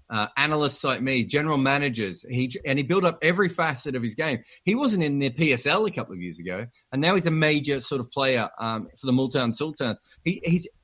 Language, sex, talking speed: English, male, 215 wpm